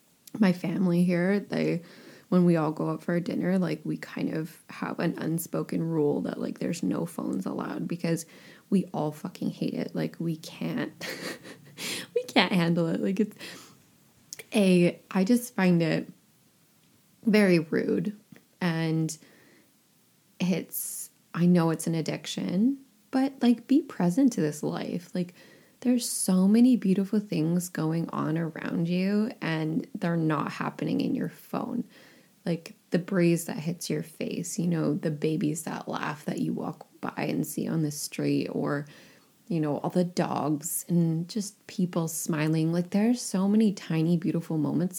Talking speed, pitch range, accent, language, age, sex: 155 wpm, 160-215 Hz, American, English, 20-39, female